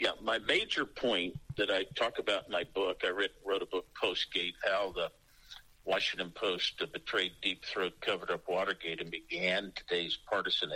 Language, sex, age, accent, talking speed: English, male, 50-69, American, 165 wpm